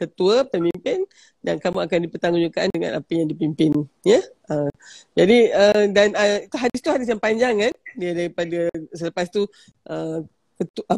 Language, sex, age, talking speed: Malay, female, 40-59, 155 wpm